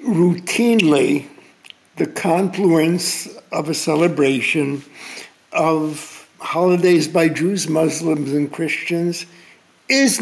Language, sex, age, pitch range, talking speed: English, male, 60-79, 155-200 Hz, 80 wpm